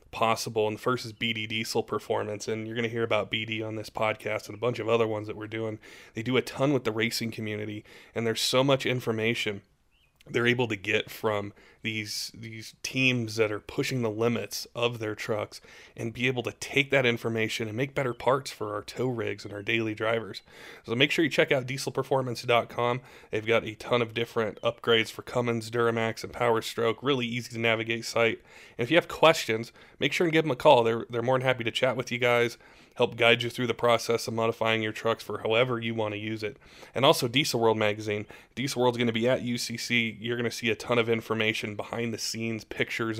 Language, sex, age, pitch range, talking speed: English, male, 20-39, 110-120 Hz, 225 wpm